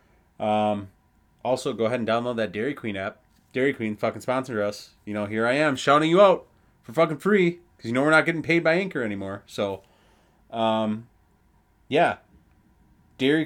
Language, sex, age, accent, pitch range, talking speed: English, male, 30-49, American, 105-140 Hz, 180 wpm